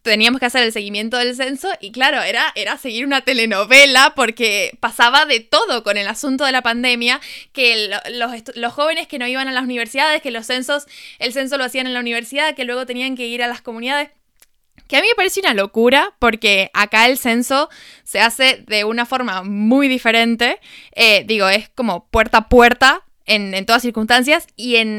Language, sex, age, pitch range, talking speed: Spanish, female, 10-29, 220-270 Hz, 205 wpm